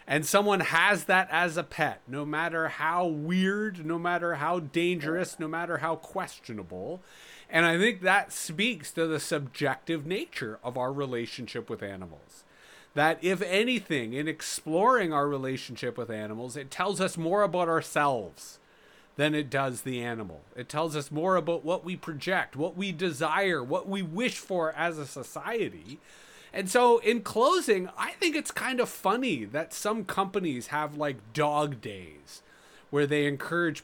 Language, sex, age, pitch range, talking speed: English, male, 30-49, 145-195 Hz, 160 wpm